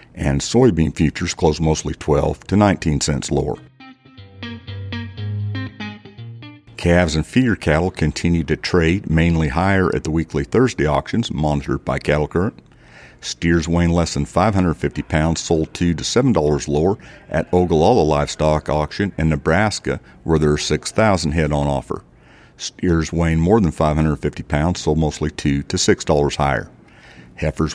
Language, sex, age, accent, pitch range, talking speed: English, male, 50-69, American, 75-90 Hz, 145 wpm